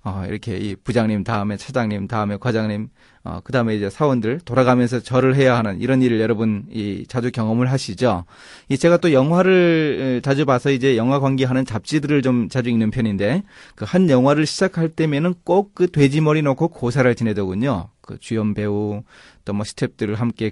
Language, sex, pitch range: Korean, male, 110-150 Hz